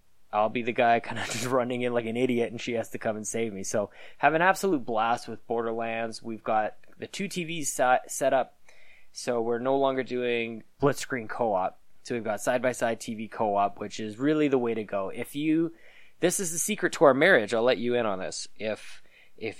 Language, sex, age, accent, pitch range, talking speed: English, male, 20-39, American, 110-140 Hz, 220 wpm